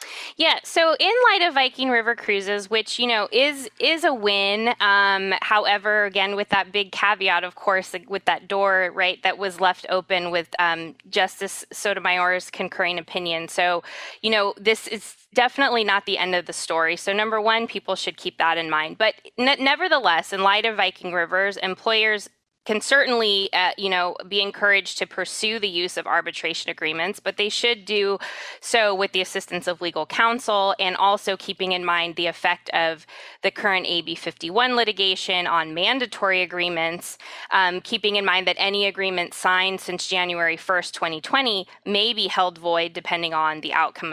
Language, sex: English, female